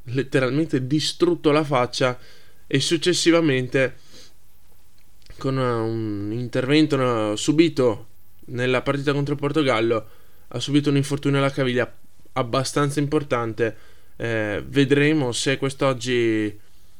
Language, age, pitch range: Italian, 10-29, 110-135 Hz